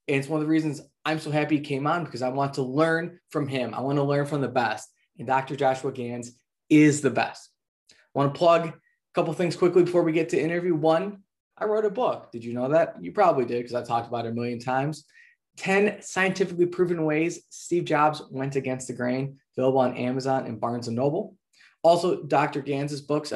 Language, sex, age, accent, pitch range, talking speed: English, male, 20-39, American, 130-170 Hz, 230 wpm